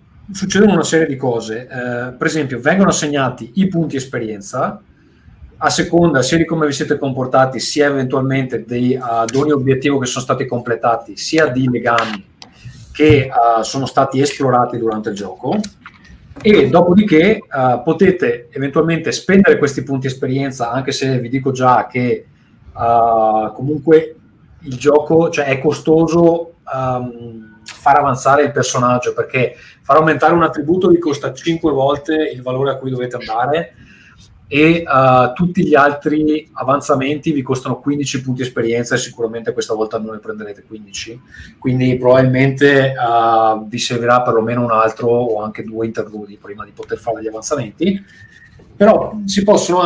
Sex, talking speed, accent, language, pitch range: male, 150 wpm, native, Italian, 120-155 Hz